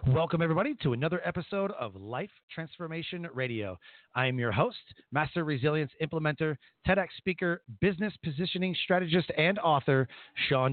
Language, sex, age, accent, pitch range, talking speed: English, male, 40-59, American, 125-165 Hz, 135 wpm